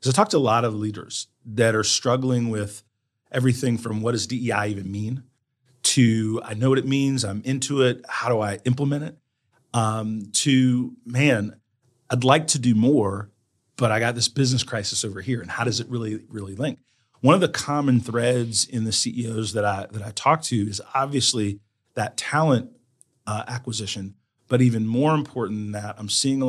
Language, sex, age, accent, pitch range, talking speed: English, male, 40-59, American, 110-130 Hz, 190 wpm